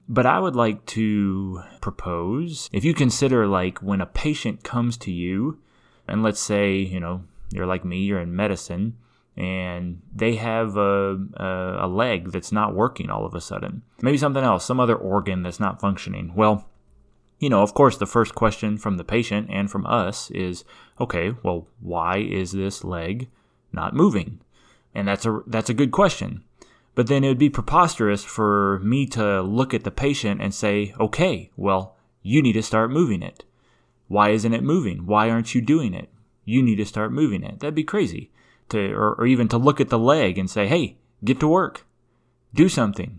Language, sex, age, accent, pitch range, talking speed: English, male, 20-39, American, 95-125 Hz, 190 wpm